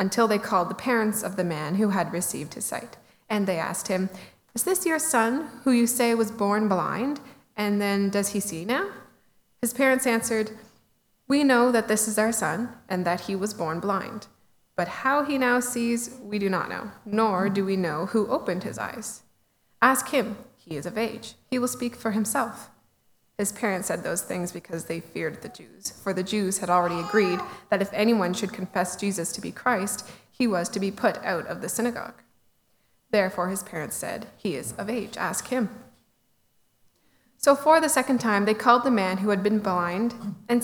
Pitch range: 190-240 Hz